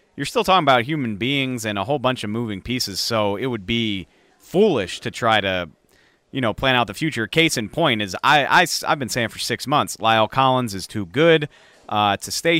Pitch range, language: 105-145 Hz, English